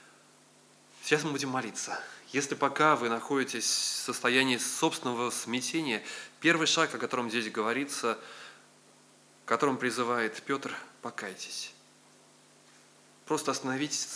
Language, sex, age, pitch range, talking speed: Russian, male, 20-39, 105-130 Hz, 105 wpm